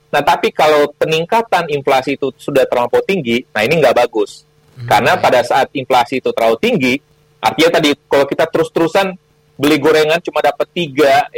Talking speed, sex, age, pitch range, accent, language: 160 wpm, male, 30-49, 130-155 Hz, native, Indonesian